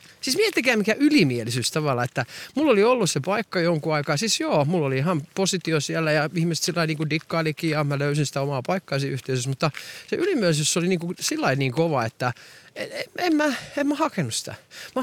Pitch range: 140-210 Hz